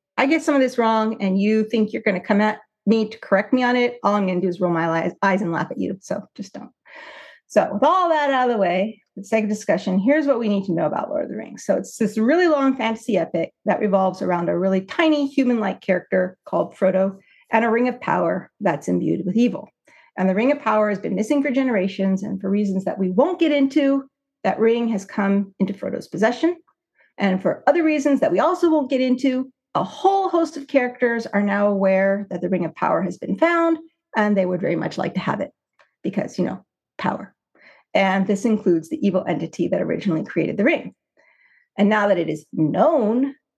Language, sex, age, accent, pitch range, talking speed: English, female, 40-59, American, 190-270 Hz, 225 wpm